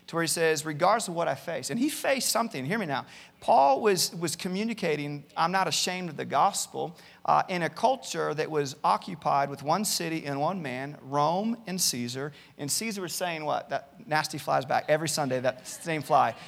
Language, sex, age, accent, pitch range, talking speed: English, male, 40-59, American, 145-185 Hz, 205 wpm